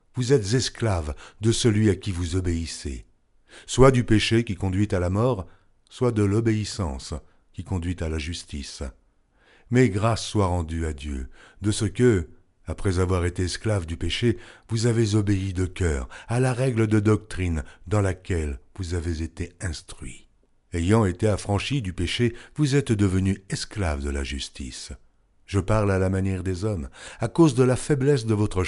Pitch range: 80-115 Hz